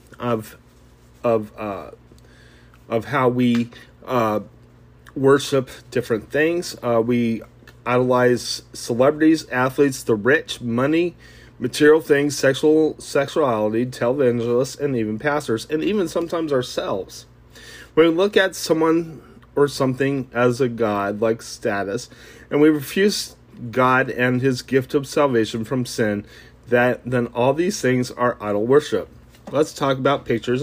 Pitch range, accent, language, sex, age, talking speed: 105-135 Hz, American, English, male, 30-49, 125 wpm